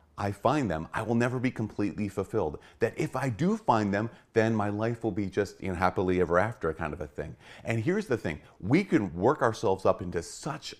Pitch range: 85-115 Hz